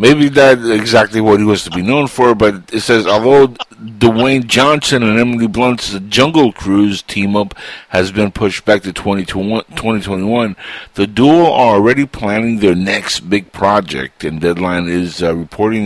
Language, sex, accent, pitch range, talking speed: English, male, American, 95-115 Hz, 160 wpm